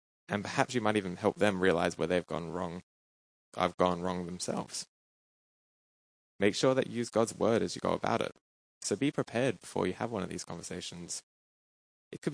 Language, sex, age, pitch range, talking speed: English, male, 10-29, 90-120 Hz, 195 wpm